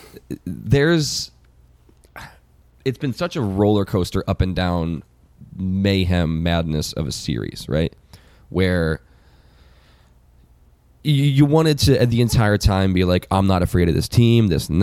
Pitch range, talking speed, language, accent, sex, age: 80-105 Hz, 140 wpm, English, American, male, 10-29